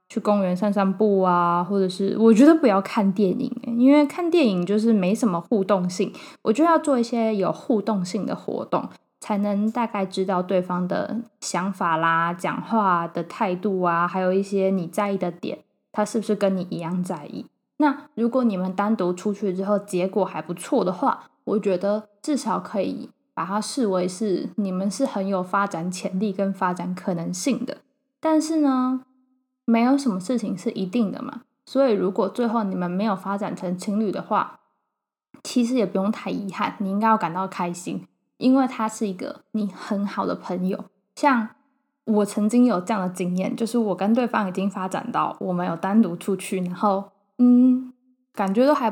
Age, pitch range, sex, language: 10-29, 185-240 Hz, female, Chinese